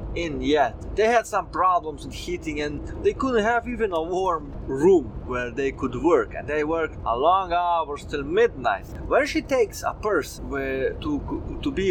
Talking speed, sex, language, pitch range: 180 wpm, male, English, 145-235 Hz